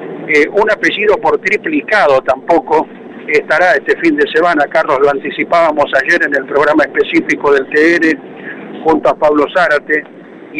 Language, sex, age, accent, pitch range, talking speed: Spanish, male, 50-69, Argentinian, 150-230 Hz, 145 wpm